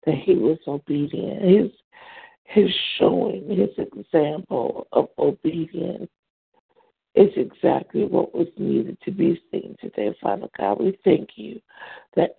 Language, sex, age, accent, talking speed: English, female, 60-79, American, 125 wpm